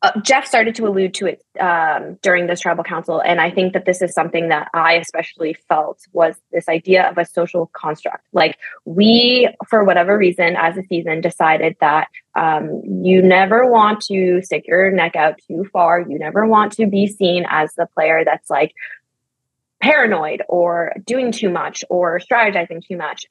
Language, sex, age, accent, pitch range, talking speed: English, female, 20-39, American, 170-205 Hz, 185 wpm